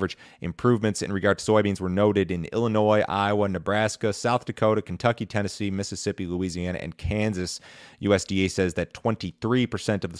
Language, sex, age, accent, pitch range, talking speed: English, male, 30-49, American, 85-100 Hz, 155 wpm